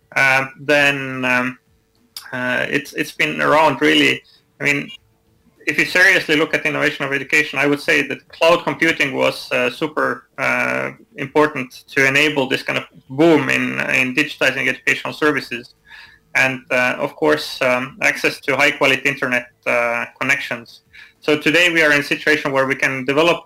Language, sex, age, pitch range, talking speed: English, male, 30-49, 130-150 Hz, 165 wpm